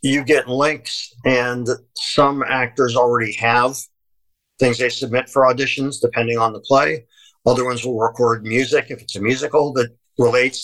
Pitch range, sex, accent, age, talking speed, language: 115-135 Hz, male, American, 50-69, 160 wpm, English